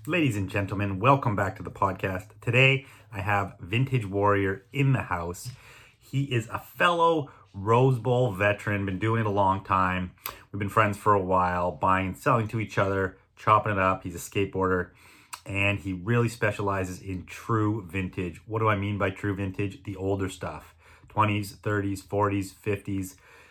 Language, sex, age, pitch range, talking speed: English, male, 30-49, 95-120 Hz, 170 wpm